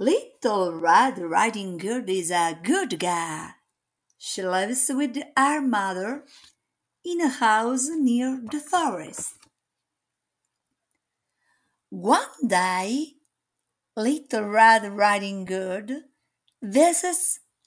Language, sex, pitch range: Italian, female, 220-320 Hz